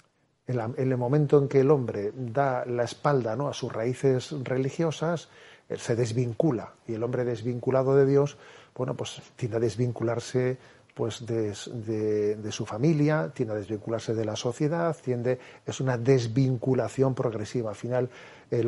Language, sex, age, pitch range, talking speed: Spanish, male, 40-59, 120-140 Hz, 155 wpm